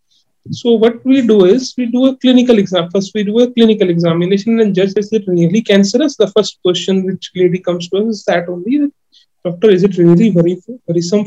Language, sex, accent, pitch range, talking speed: English, male, Indian, 180-220 Hz, 200 wpm